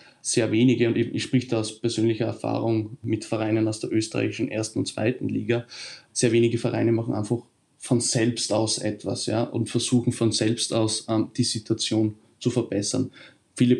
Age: 20-39